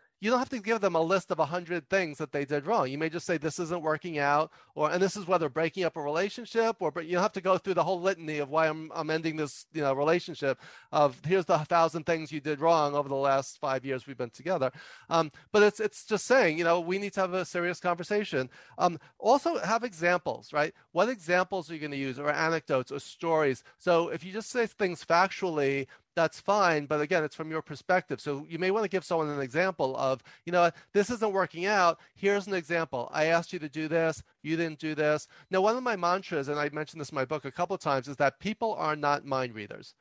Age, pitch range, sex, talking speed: 40-59, 145-190 Hz, male, 250 wpm